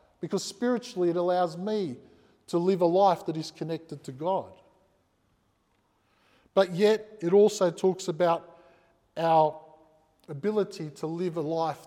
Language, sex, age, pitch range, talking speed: English, male, 50-69, 160-195 Hz, 130 wpm